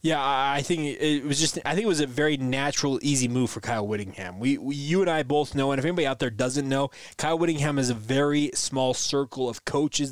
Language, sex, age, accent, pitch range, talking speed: English, male, 20-39, American, 135-165 Hz, 245 wpm